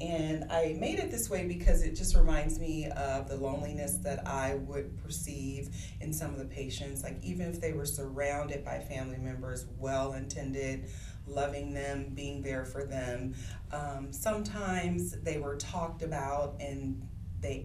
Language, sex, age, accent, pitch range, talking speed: English, female, 30-49, American, 100-140 Hz, 160 wpm